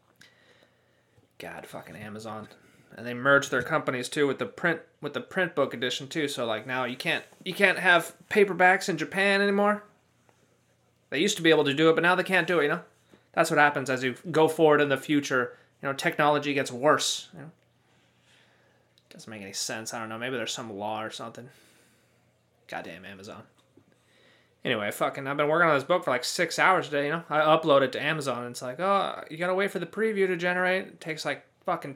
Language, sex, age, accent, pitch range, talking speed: English, male, 30-49, American, 125-180 Hz, 215 wpm